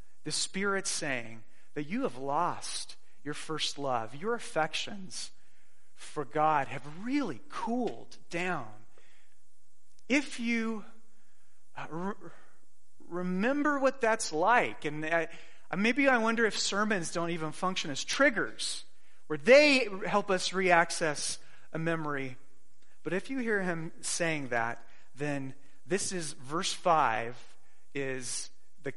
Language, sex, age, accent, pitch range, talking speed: English, male, 30-49, American, 145-230 Hz, 120 wpm